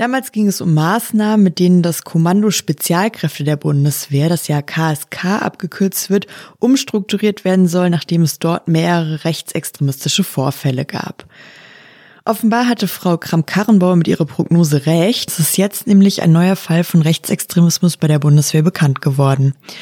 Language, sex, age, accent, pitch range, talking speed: German, female, 20-39, German, 160-200 Hz, 150 wpm